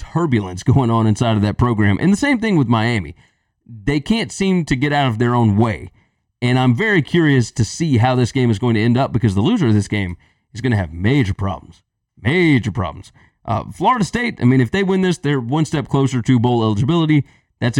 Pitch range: 110-150 Hz